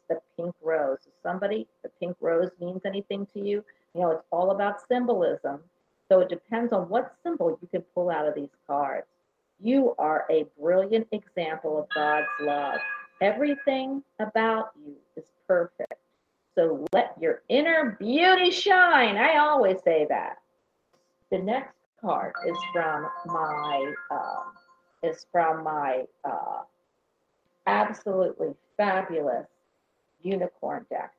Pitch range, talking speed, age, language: 165-255 Hz, 135 wpm, 50-69, English